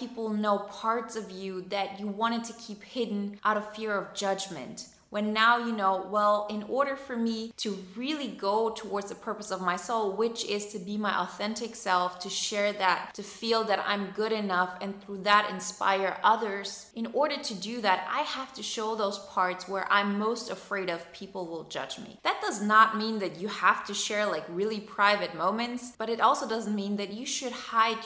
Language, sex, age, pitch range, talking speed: English, female, 20-39, 185-230 Hz, 205 wpm